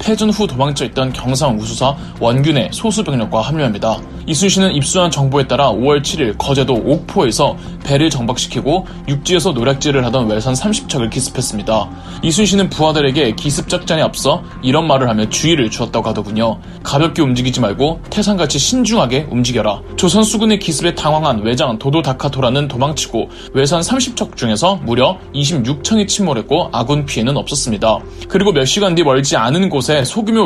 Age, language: 20-39, Korean